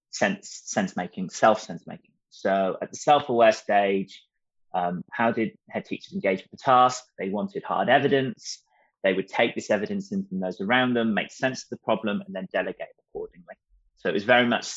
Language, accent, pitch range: English, British, 110-155 Hz